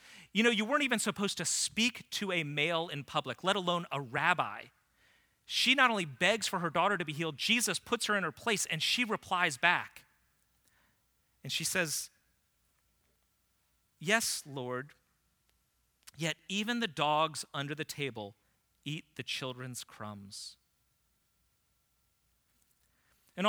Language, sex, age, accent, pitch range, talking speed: English, male, 30-49, American, 135-190 Hz, 140 wpm